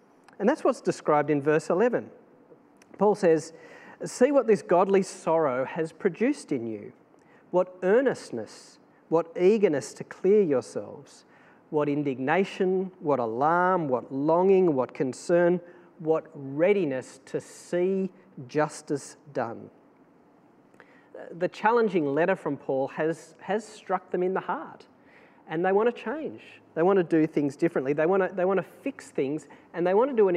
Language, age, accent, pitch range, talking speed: English, 40-59, Australian, 150-200 Hz, 145 wpm